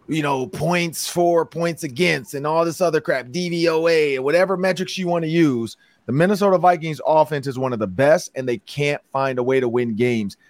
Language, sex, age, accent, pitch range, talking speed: English, male, 30-49, American, 135-175 Hz, 205 wpm